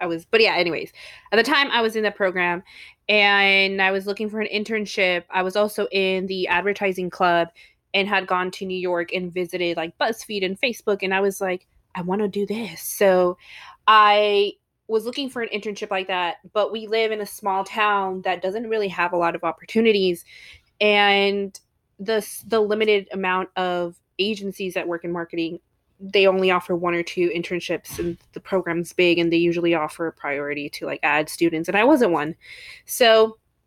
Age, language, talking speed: 20-39, English, 195 wpm